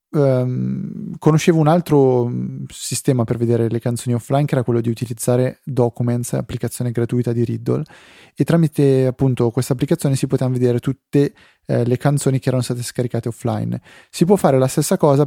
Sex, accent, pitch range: male, native, 120-150 Hz